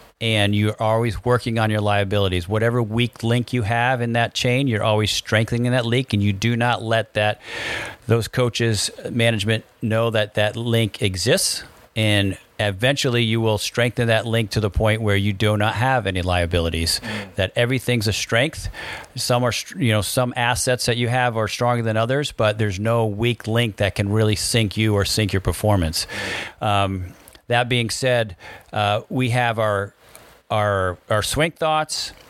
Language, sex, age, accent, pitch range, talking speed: English, male, 40-59, American, 105-120 Hz, 175 wpm